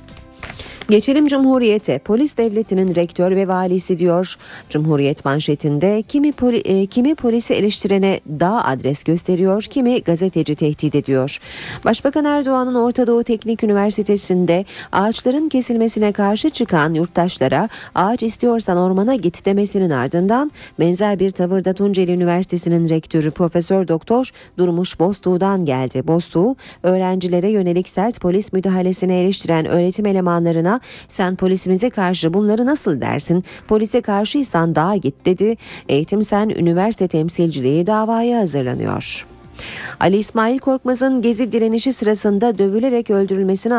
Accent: native